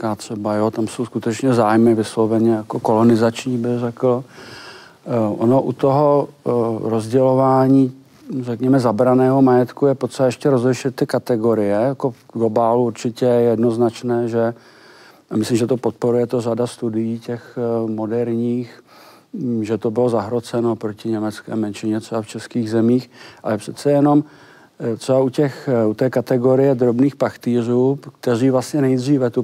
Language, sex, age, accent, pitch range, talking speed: Czech, male, 50-69, native, 115-130 Hz, 130 wpm